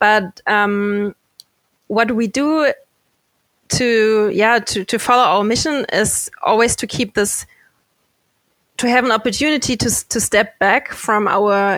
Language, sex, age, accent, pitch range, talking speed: English, female, 20-39, German, 200-235 Hz, 140 wpm